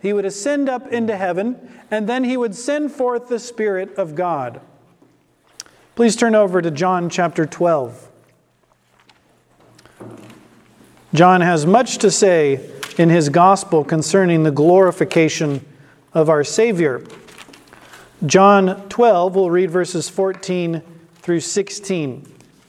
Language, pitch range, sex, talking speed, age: English, 175-235 Hz, male, 120 wpm, 40-59